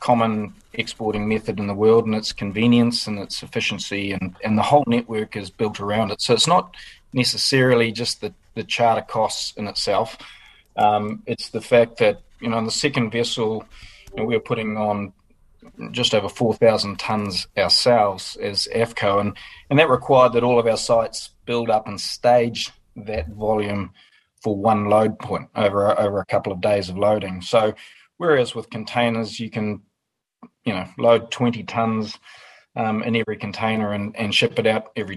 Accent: Australian